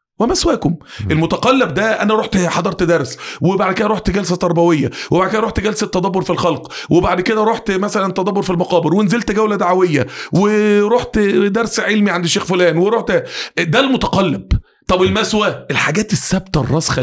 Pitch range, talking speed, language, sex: 155-215 Hz, 150 wpm, Arabic, male